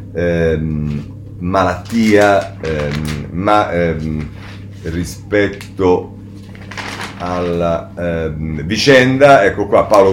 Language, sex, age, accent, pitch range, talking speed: Italian, male, 40-59, native, 85-110 Hz, 70 wpm